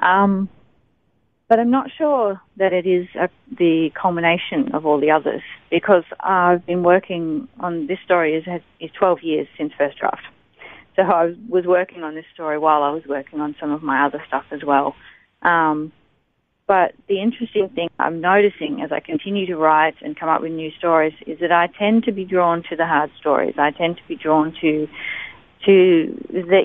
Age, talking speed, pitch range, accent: 30-49, 190 wpm, 155-195 Hz, Australian